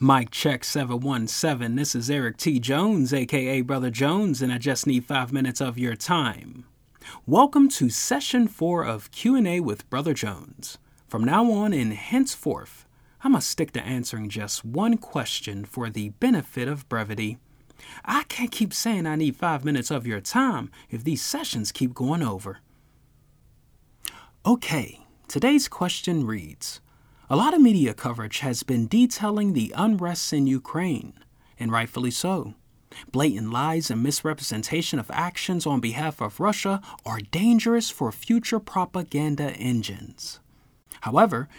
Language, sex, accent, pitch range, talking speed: English, male, American, 125-195 Hz, 145 wpm